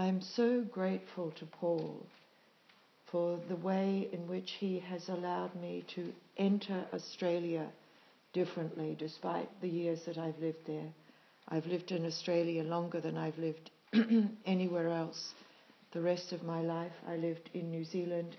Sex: female